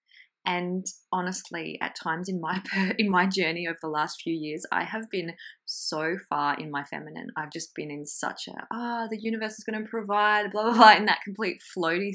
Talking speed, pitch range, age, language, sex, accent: 215 wpm, 160-215 Hz, 20-39, English, female, Australian